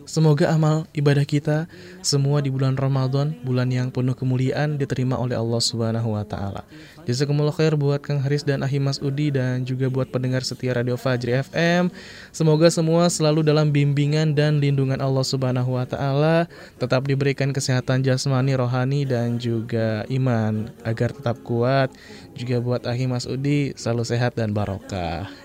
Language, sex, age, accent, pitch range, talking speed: Indonesian, male, 20-39, native, 115-140 Hz, 150 wpm